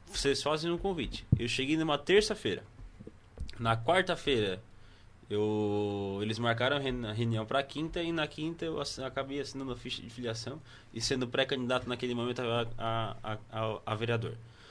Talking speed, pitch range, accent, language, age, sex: 150 wpm, 110-145 Hz, Brazilian, Portuguese, 20-39, male